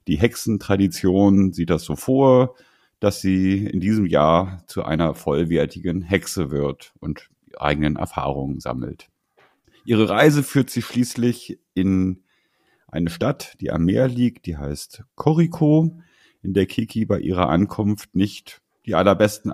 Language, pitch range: German, 95-125 Hz